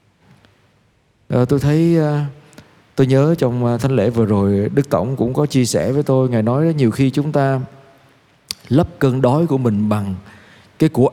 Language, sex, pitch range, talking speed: Vietnamese, male, 110-150 Hz, 175 wpm